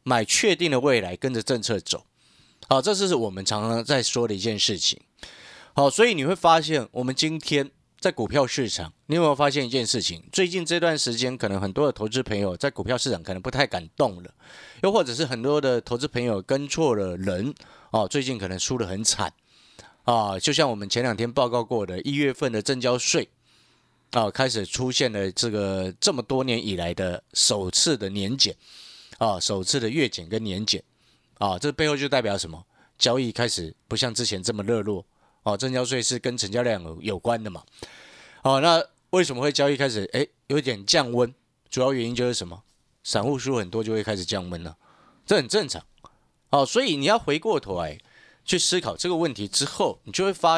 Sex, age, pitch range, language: male, 30-49, 105-140 Hz, Chinese